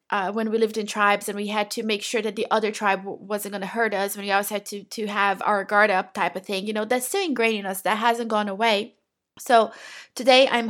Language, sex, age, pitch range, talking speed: English, female, 20-39, 210-240 Hz, 275 wpm